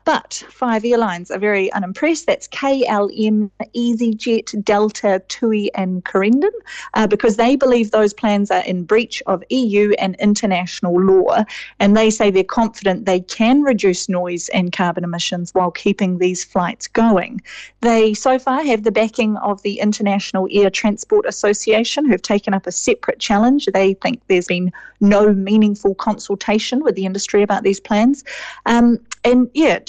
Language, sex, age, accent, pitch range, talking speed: English, female, 40-59, Australian, 195-235 Hz, 155 wpm